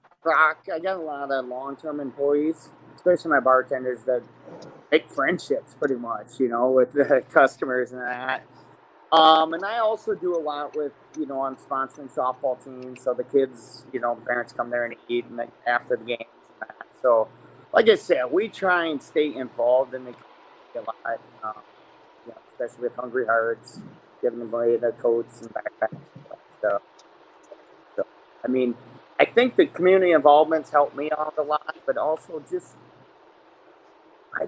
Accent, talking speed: American, 170 wpm